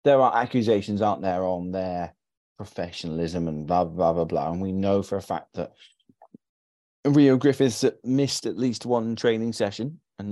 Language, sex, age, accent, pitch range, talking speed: English, male, 30-49, British, 90-115 Hz, 170 wpm